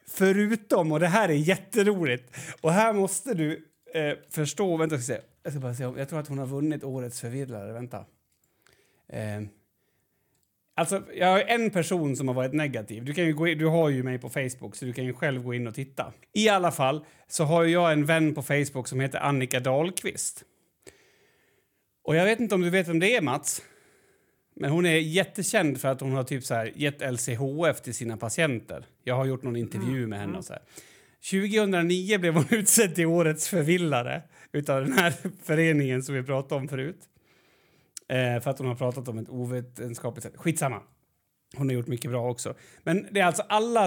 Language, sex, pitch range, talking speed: Swedish, male, 130-175 Hz, 200 wpm